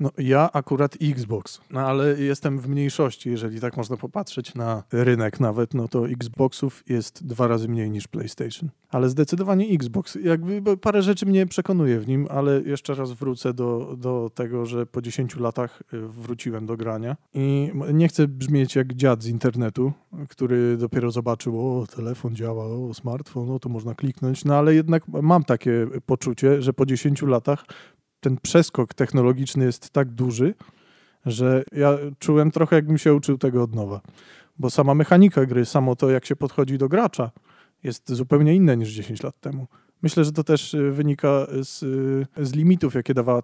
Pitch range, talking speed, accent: 120-145 Hz, 170 wpm, native